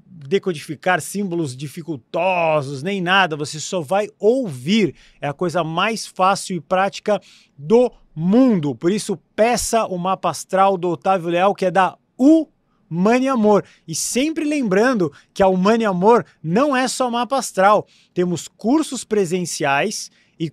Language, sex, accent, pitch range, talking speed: English, male, Brazilian, 165-210 Hz, 145 wpm